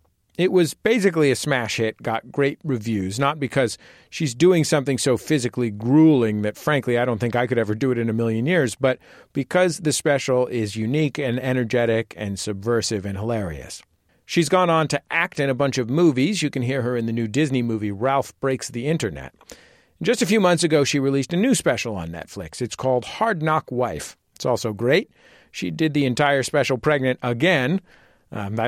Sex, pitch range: male, 115-155 Hz